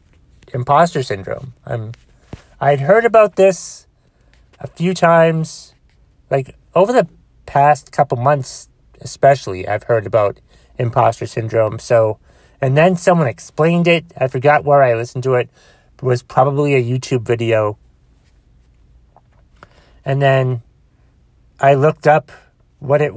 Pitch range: 120-150 Hz